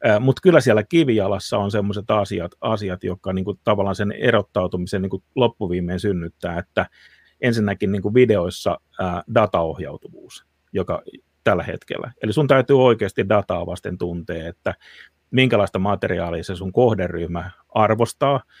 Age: 30-49